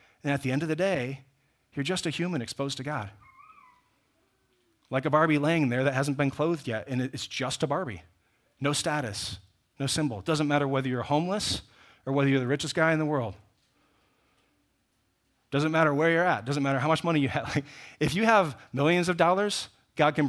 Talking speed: 205 wpm